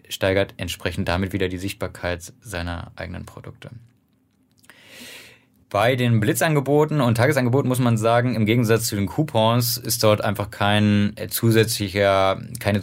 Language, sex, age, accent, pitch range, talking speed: German, male, 20-39, German, 95-115 Hz, 130 wpm